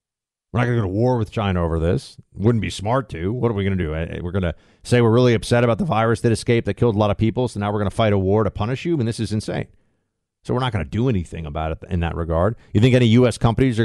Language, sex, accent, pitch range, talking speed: English, male, American, 100-135 Hz, 320 wpm